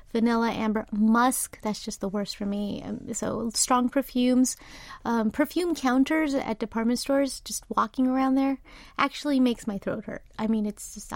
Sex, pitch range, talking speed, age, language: female, 225-275 Hz, 160 wpm, 30-49, English